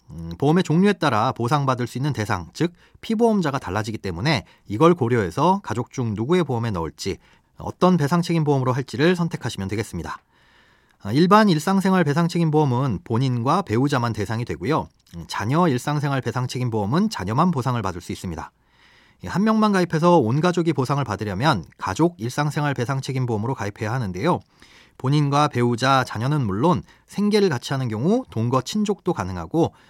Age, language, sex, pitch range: 40-59, Korean, male, 115-170 Hz